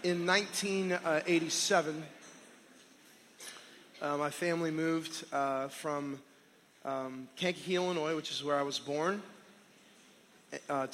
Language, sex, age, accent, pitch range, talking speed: English, male, 20-39, American, 140-160 Hz, 100 wpm